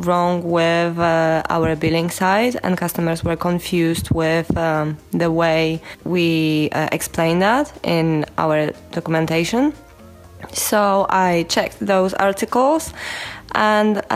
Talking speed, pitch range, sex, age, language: 115 wpm, 170-205 Hz, female, 20-39, English